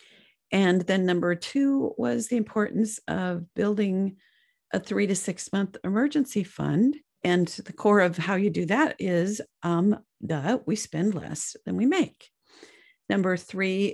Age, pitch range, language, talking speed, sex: 50-69, 155-210 Hz, English, 150 wpm, female